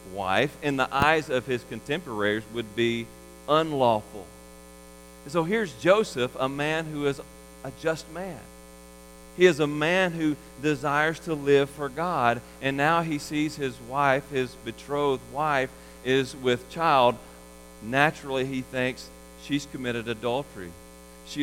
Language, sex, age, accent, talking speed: English, male, 40-59, American, 135 wpm